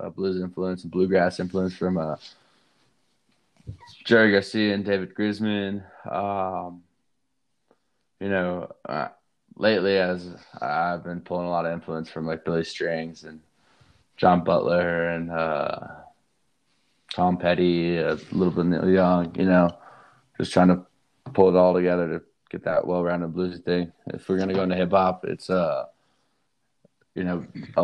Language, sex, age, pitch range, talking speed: English, male, 20-39, 85-95 Hz, 145 wpm